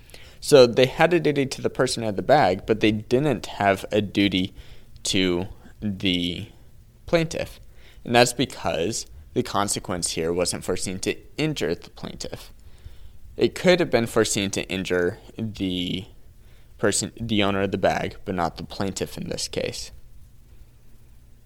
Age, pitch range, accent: 20-39, 90-115 Hz, American